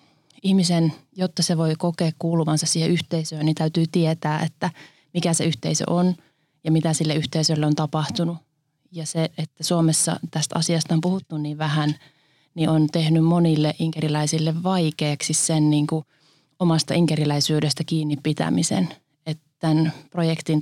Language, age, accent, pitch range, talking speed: Finnish, 30-49, native, 155-170 Hz, 140 wpm